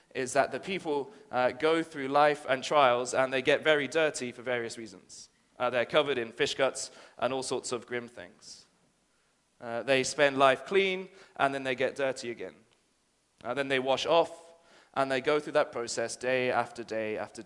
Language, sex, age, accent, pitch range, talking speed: English, male, 30-49, British, 120-150 Hz, 195 wpm